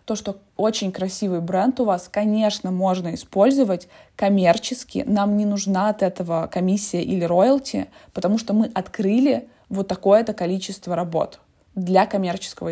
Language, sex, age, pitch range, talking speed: Russian, female, 20-39, 190-255 Hz, 135 wpm